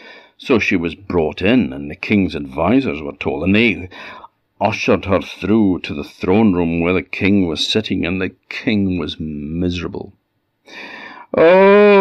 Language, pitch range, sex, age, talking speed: English, 90-145 Hz, male, 50-69, 155 wpm